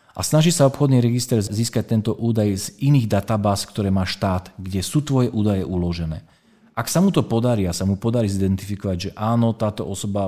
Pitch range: 95-115 Hz